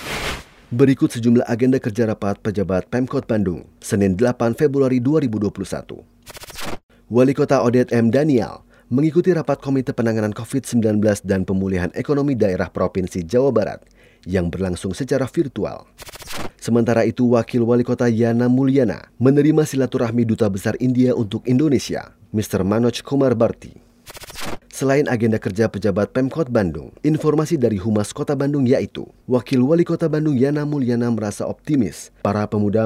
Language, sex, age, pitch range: Indonesian, male, 30-49, 105-135 Hz